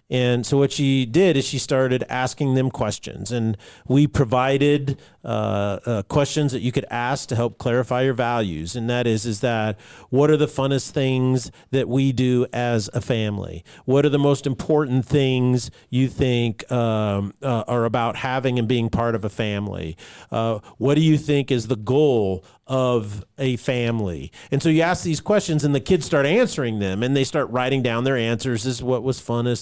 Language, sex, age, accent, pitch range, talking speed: English, male, 40-59, American, 115-140 Hz, 195 wpm